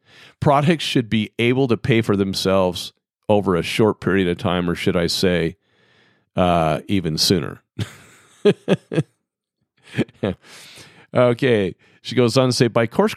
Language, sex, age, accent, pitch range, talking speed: English, male, 40-59, American, 105-140 Hz, 130 wpm